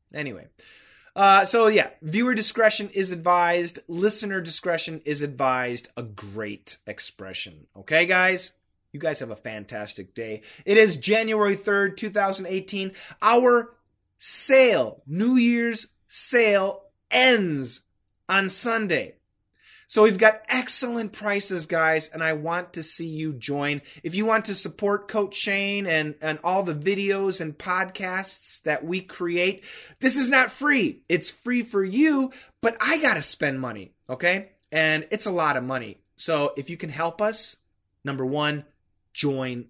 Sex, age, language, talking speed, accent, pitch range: male, 30-49, English, 145 wpm, American, 155-215 Hz